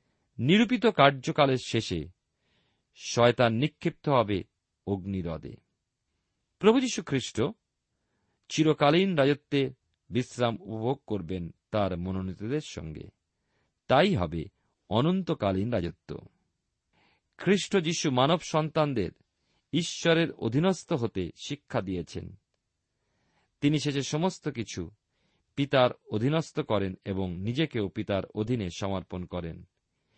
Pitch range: 95-150 Hz